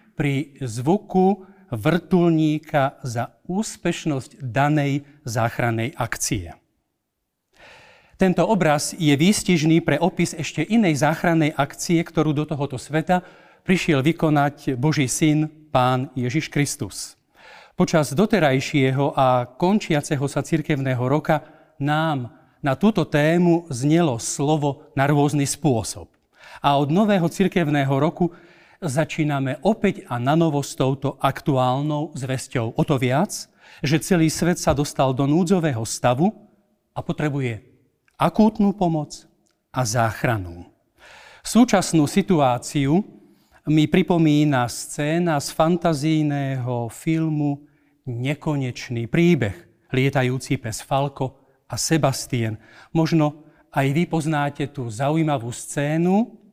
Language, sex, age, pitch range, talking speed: Slovak, male, 40-59, 135-170 Hz, 105 wpm